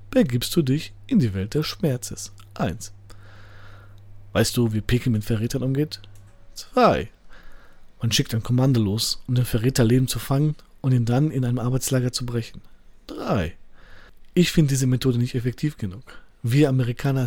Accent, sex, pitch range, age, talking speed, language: German, male, 110-135 Hz, 40-59, 155 wpm, German